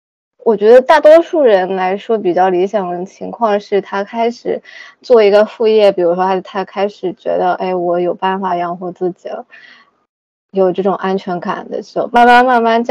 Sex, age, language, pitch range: female, 20-39, Chinese, 185-235 Hz